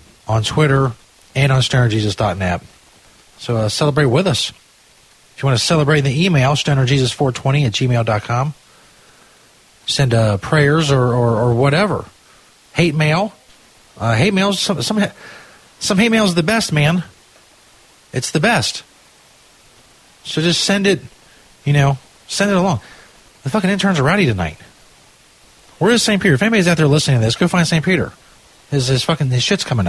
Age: 40-59